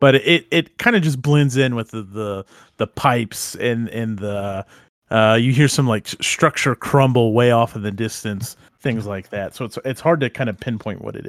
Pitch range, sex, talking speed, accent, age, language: 110-135 Hz, male, 220 wpm, American, 30-49, English